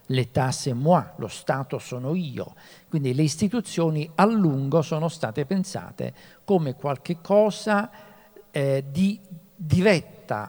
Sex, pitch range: male, 130-175 Hz